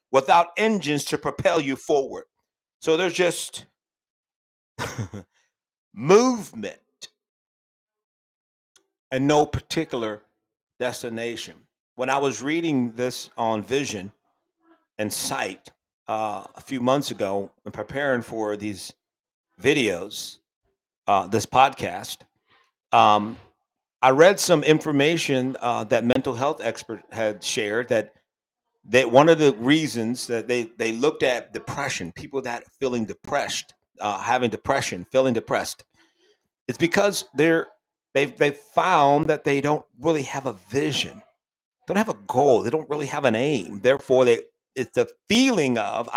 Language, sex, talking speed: English, male, 125 wpm